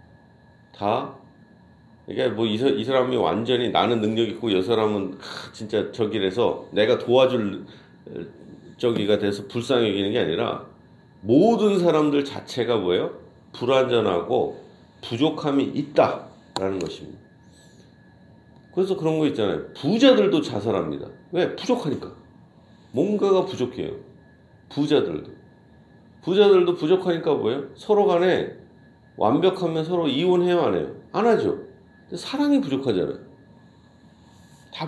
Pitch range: 115-180 Hz